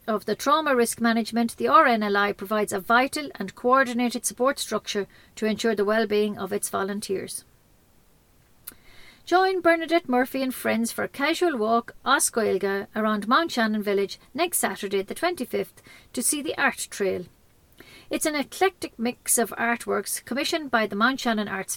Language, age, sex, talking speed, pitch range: English, 50-69, female, 155 wpm, 205-255 Hz